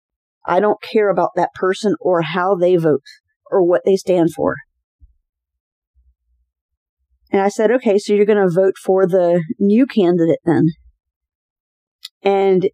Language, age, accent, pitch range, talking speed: English, 40-59, American, 155-210 Hz, 140 wpm